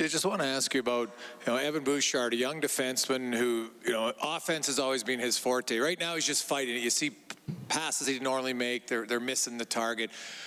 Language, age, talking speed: English, 40-59, 230 wpm